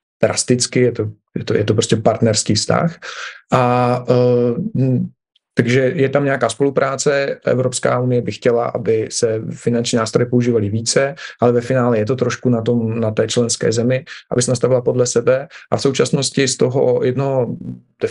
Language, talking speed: Slovak, 170 wpm